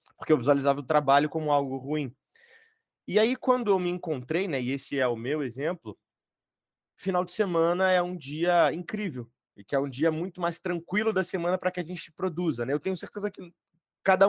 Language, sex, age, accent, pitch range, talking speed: Portuguese, male, 30-49, Brazilian, 145-190 Hz, 205 wpm